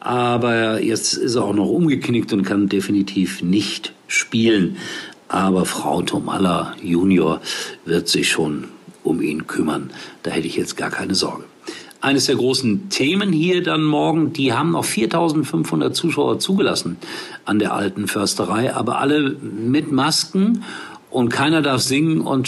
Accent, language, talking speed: German, German, 145 wpm